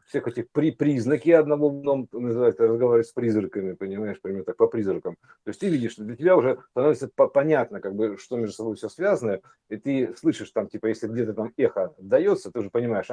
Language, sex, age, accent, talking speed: Russian, male, 50-69, native, 205 wpm